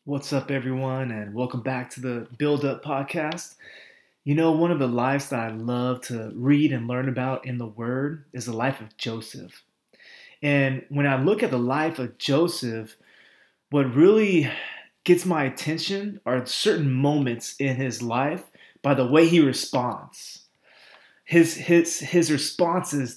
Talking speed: 160 wpm